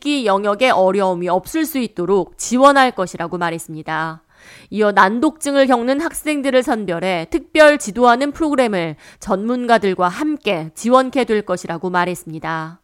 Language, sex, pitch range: Korean, female, 190-275 Hz